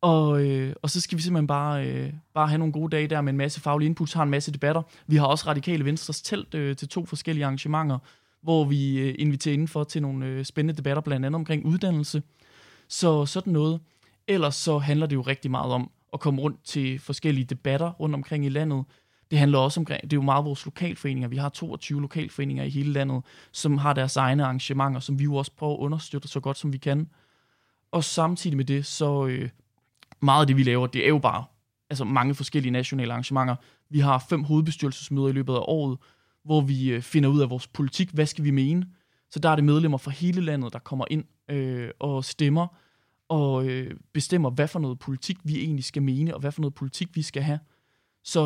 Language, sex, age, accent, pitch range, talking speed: Danish, male, 20-39, native, 135-155 Hz, 215 wpm